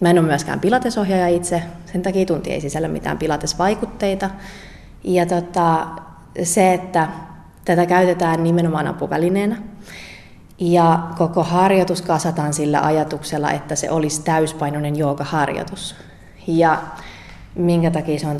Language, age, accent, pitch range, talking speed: Finnish, 20-39, native, 150-175 Hz, 120 wpm